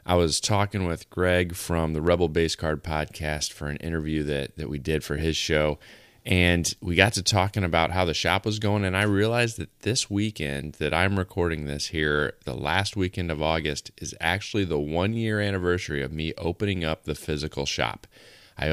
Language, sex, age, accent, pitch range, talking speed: English, male, 20-39, American, 80-100 Hz, 200 wpm